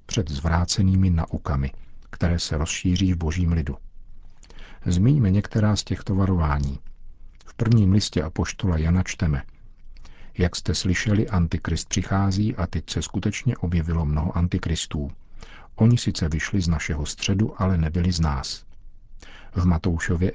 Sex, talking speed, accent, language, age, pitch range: male, 130 wpm, native, Czech, 50-69, 80-100 Hz